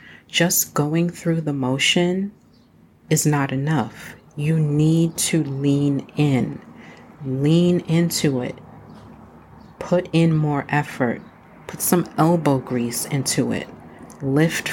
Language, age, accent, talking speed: English, 40-59, American, 110 wpm